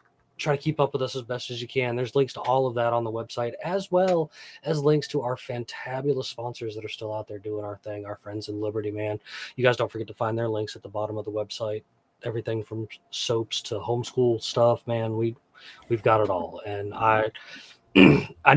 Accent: American